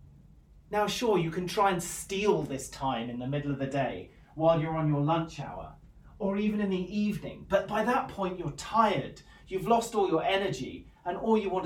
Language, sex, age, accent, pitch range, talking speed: English, male, 30-49, British, 145-195 Hz, 210 wpm